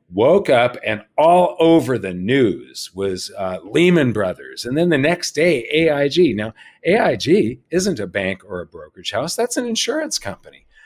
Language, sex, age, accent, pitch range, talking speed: English, male, 50-69, American, 100-135 Hz, 165 wpm